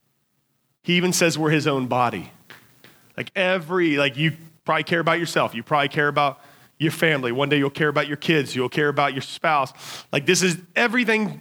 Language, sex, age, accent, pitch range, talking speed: English, male, 30-49, American, 125-155 Hz, 195 wpm